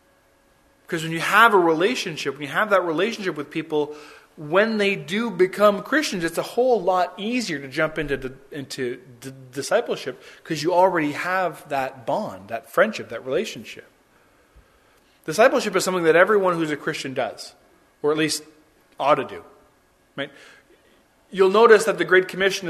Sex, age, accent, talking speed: male, 20-39, American, 165 wpm